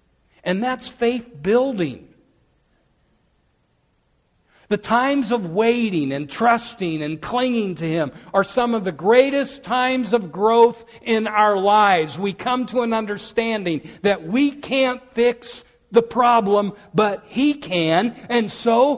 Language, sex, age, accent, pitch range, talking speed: English, male, 60-79, American, 150-240 Hz, 130 wpm